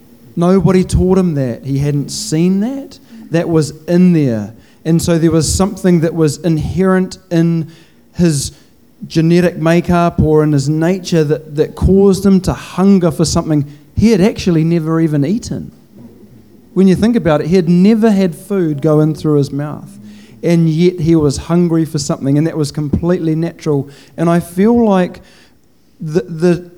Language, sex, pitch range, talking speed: English, male, 150-180 Hz, 165 wpm